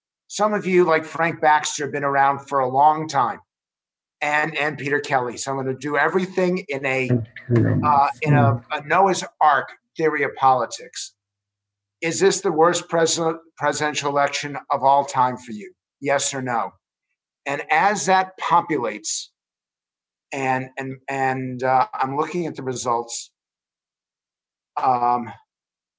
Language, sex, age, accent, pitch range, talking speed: English, male, 50-69, American, 130-165 Hz, 145 wpm